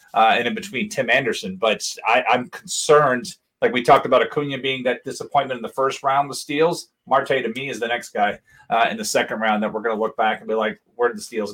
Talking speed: 255 wpm